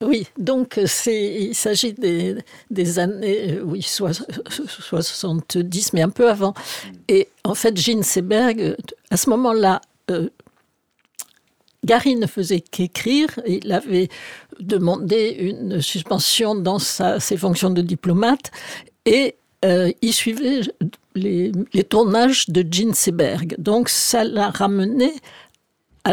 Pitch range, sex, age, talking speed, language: 190-250 Hz, female, 60-79, 130 wpm, French